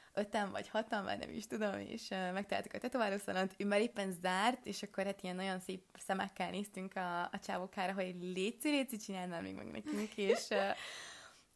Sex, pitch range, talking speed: female, 185-220 Hz, 190 wpm